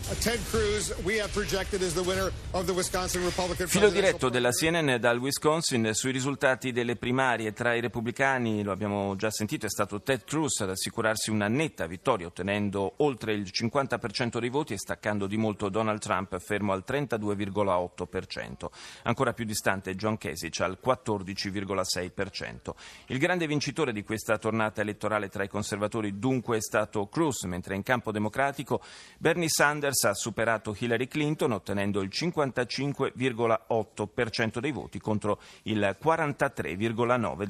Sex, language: male, Italian